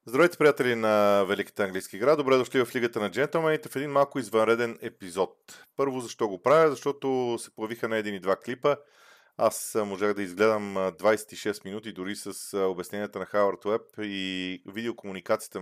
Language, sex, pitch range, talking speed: Bulgarian, male, 95-120 Hz, 165 wpm